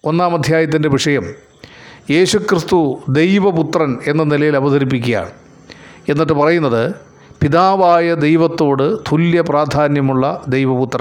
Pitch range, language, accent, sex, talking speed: 140-175 Hz, Malayalam, native, male, 80 wpm